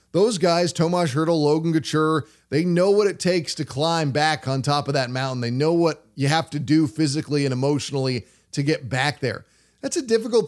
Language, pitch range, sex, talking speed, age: English, 140-165 Hz, male, 205 wpm, 20-39